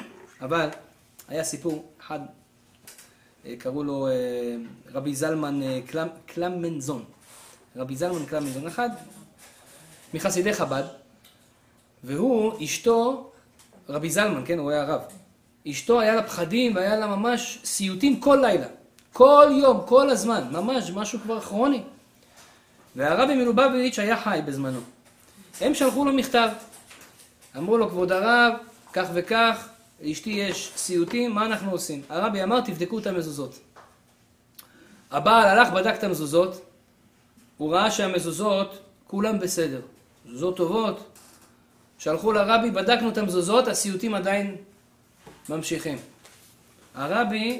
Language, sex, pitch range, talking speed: Hebrew, male, 155-230 Hz, 110 wpm